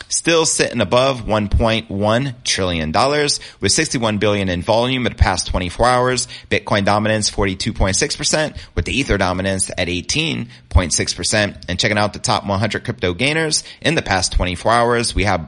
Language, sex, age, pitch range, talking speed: English, male, 30-49, 95-120 Hz, 190 wpm